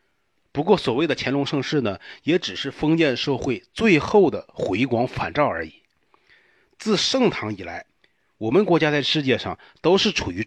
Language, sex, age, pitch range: Chinese, male, 30-49, 120-185 Hz